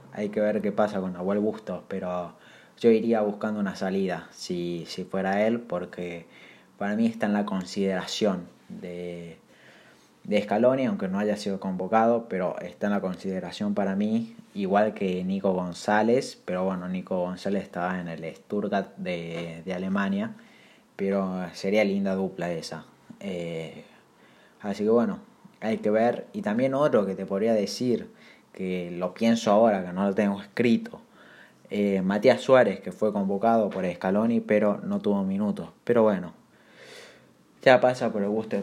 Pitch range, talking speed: 95-120 Hz, 160 wpm